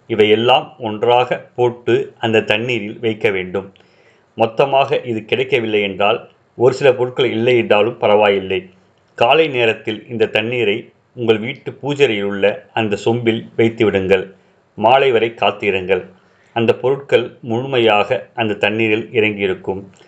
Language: Tamil